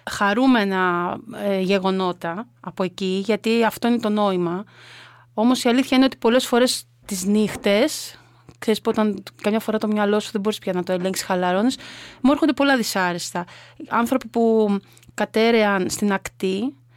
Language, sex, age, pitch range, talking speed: Greek, female, 30-49, 190-220 Hz, 150 wpm